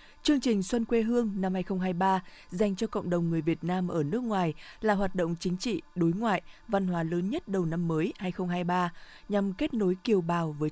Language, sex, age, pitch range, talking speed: Vietnamese, female, 20-39, 170-220 Hz, 215 wpm